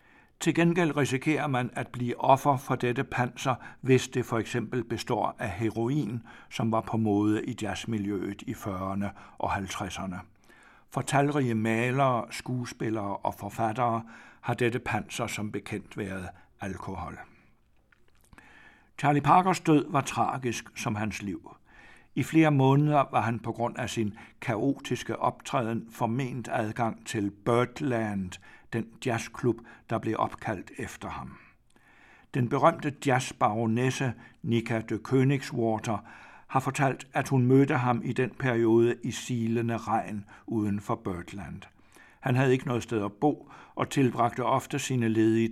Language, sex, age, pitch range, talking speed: Danish, male, 60-79, 110-130 Hz, 135 wpm